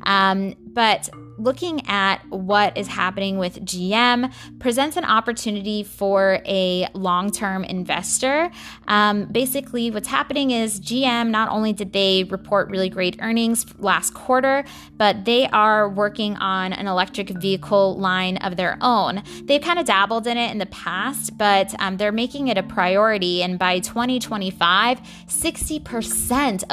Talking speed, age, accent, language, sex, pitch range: 140 wpm, 20-39, American, English, female, 190-235 Hz